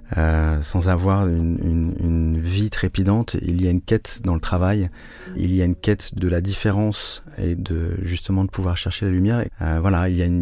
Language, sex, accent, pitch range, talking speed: French, male, French, 85-95 Hz, 220 wpm